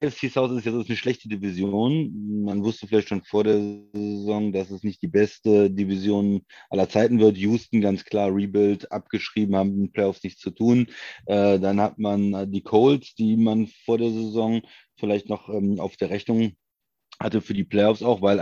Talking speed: 175 wpm